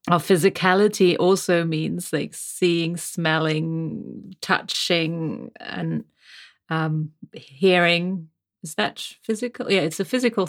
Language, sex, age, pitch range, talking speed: English, female, 30-49, 160-185 Hz, 105 wpm